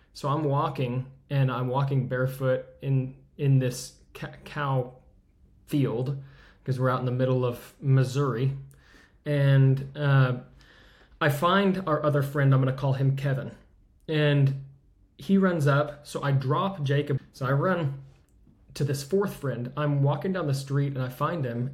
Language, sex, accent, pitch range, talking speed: English, male, American, 125-140 Hz, 155 wpm